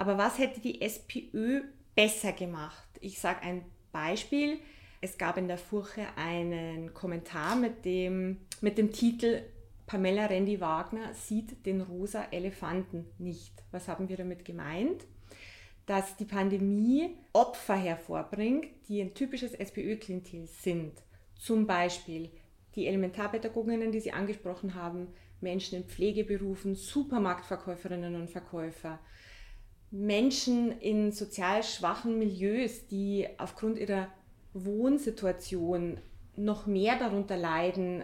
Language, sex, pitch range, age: German, female, 175-220 Hz, 30-49